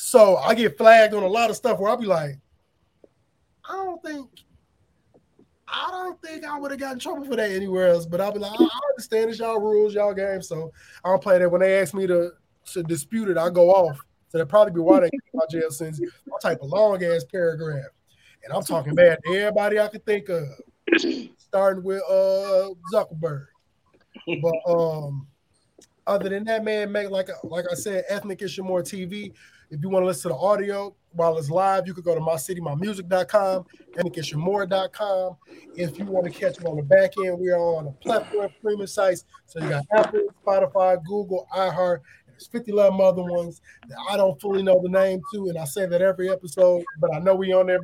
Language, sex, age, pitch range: English, male, 20-39, 175-210 Hz